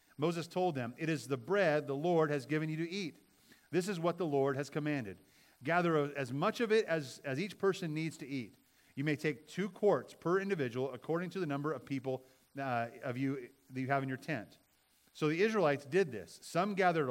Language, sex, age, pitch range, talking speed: English, male, 40-59, 125-165 Hz, 220 wpm